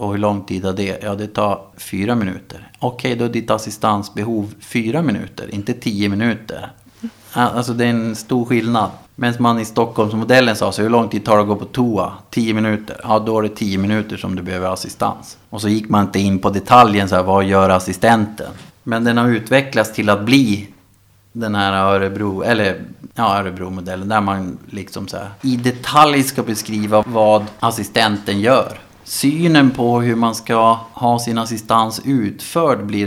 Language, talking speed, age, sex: Swedish, 185 wpm, 30-49, male